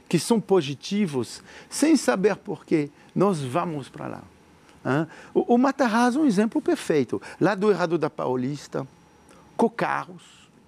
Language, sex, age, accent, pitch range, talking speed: Portuguese, male, 50-69, Brazilian, 135-190 Hz, 125 wpm